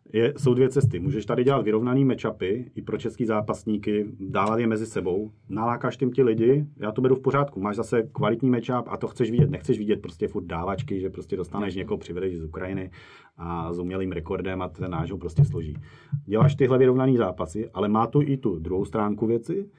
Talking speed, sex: 205 wpm, male